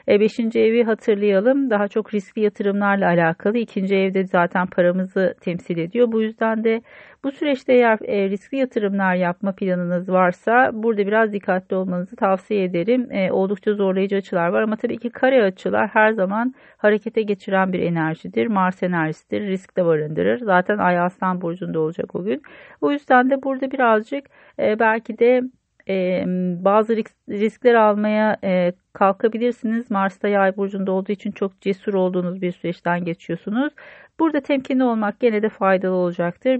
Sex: female